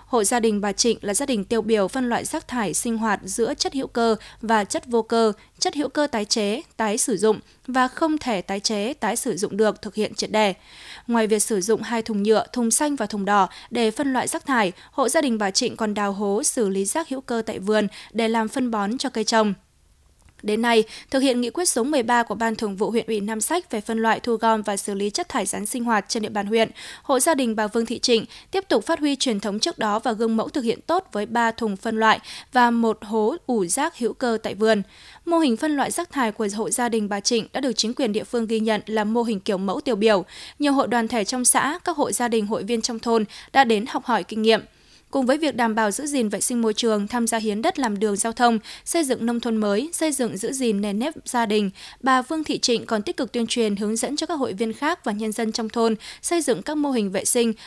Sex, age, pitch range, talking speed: female, 20-39, 215-260 Hz, 270 wpm